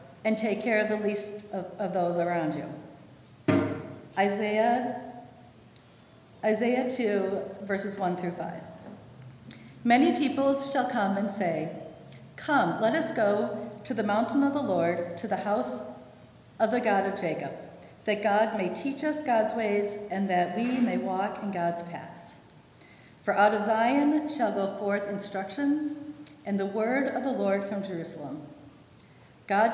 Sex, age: female, 50-69